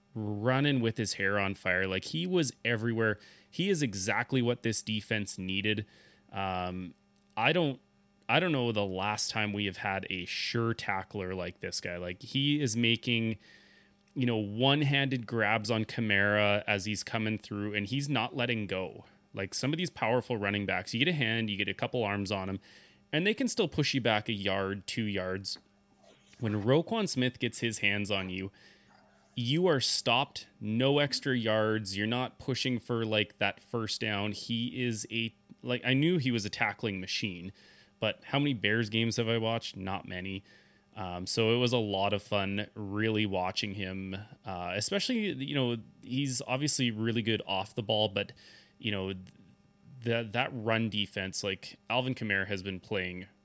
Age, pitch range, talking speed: 20-39, 100-120 Hz, 180 wpm